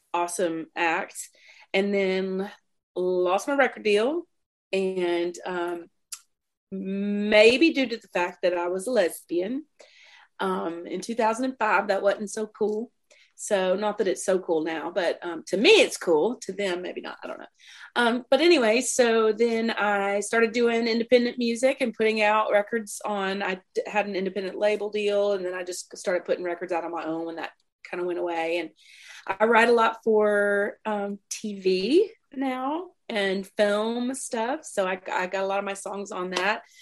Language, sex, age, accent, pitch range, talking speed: English, female, 30-49, American, 185-230 Hz, 180 wpm